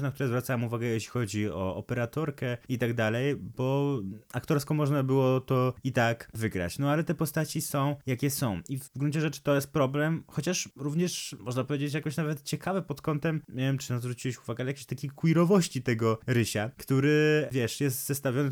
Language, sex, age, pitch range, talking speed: Polish, male, 20-39, 120-145 Hz, 190 wpm